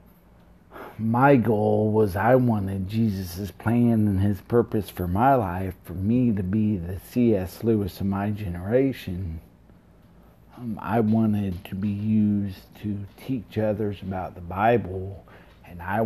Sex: male